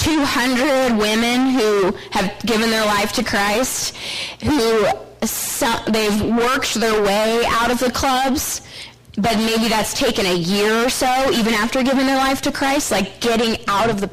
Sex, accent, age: female, American, 20-39